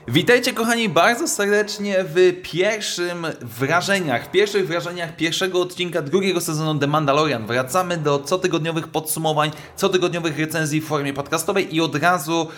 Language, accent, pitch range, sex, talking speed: Polish, native, 145-190 Hz, male, 135 wpm